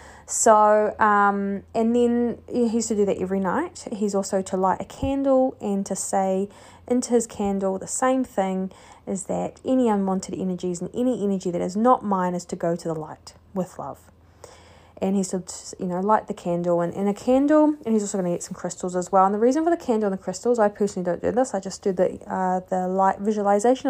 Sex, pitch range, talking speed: female, 190-240 Hz, 225 wpm